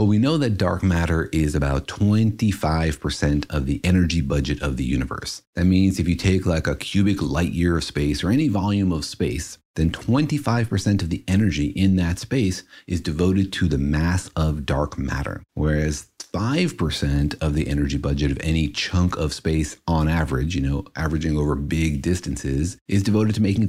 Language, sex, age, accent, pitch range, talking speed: English, male, 40-59, American, 80-110 Hz, 180 wpm